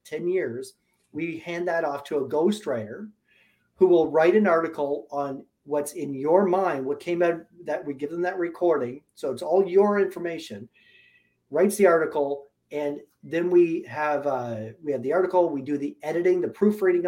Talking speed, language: 180 wpm, English